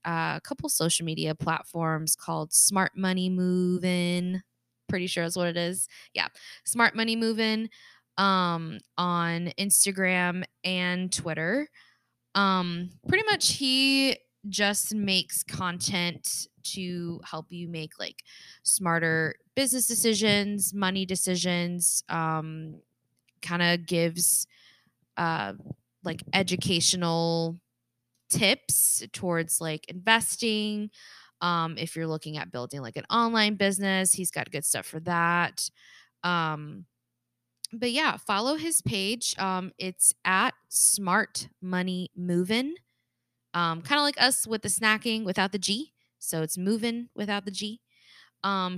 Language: English